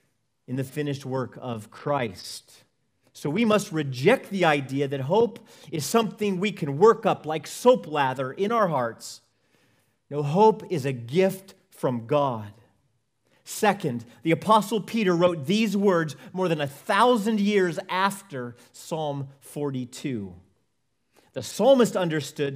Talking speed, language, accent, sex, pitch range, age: 135 wpm, English, American, male, 135-200 Hz, 40-59